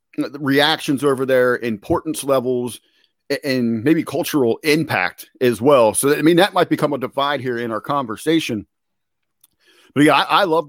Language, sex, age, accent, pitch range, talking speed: English, male, 40-59, American, 125-155 Hz, 155 wpm